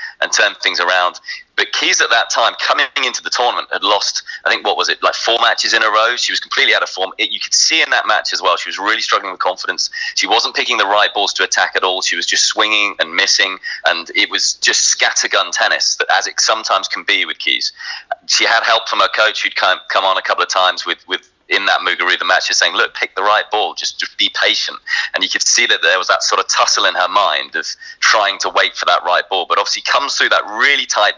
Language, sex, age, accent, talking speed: English, male, 30-49, British, 260 wpm